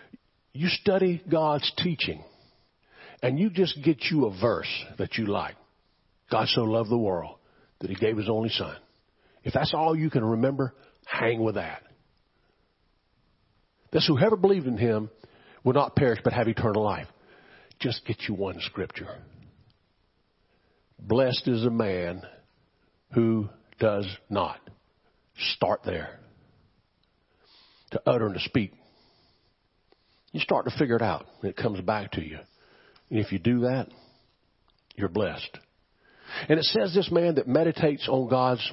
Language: English